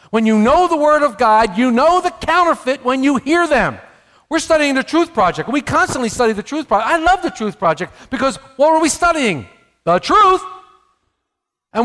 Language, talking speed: English, 200 wpm